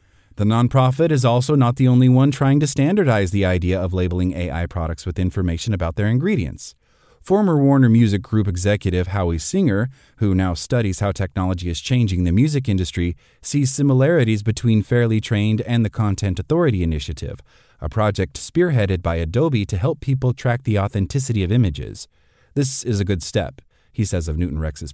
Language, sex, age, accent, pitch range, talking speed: English, male, 30-49, American, 95-130 Hz, 175 wpm